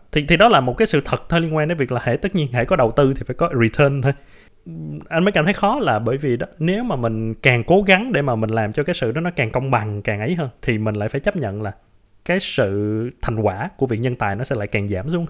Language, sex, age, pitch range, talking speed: Vietnamese, male, 20-39, 110-155 Hz, 300 wpm